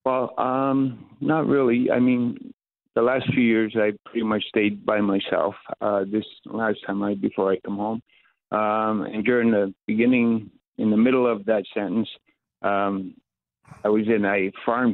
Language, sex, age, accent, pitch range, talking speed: English, male, 50-69, American, 100-115 Hz, 170 wpm